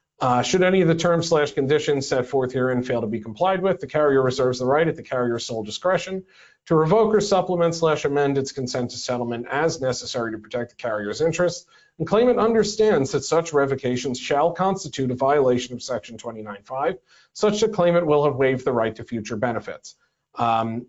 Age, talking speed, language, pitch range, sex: 40-59, 195 wpm, English, 125-165 Hz, male